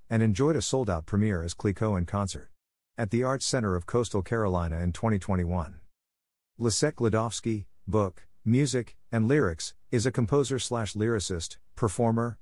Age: 50-69